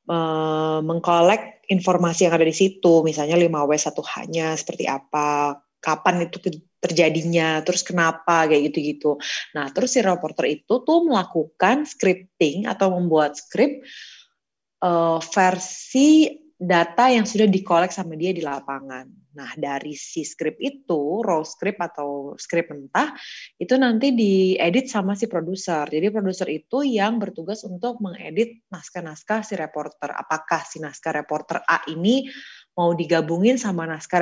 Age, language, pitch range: 20-39, Indonesian, 155-210 Hz